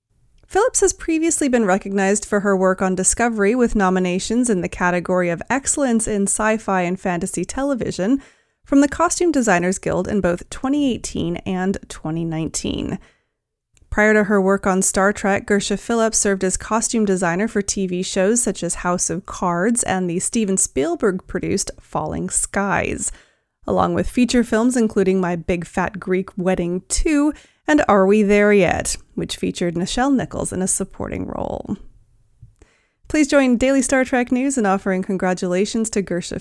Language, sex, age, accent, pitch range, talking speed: English, female, 30-49, American, 185-240 Hz, 155 wpm